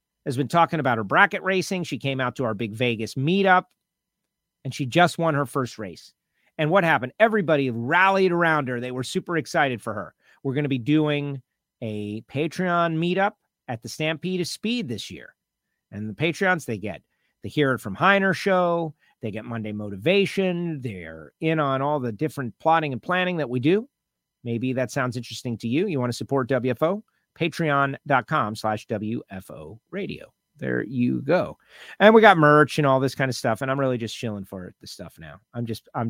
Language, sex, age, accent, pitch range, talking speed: English, male, 40-59, American, 120-170 Hz, 195 wpm